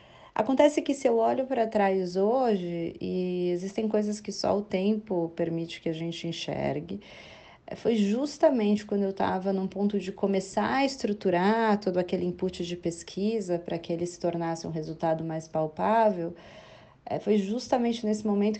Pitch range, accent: 170-215 Hz, Brazilian